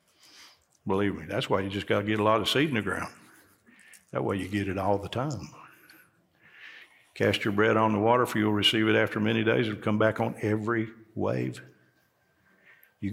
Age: 50-69